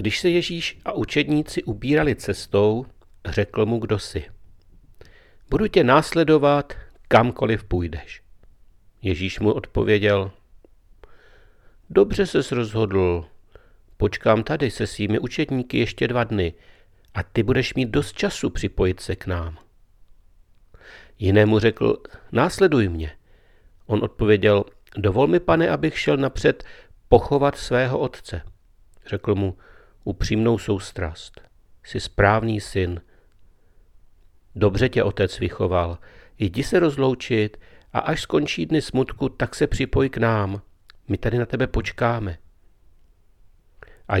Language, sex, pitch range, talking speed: Czech, male, 95-130 Hz, 115 wpm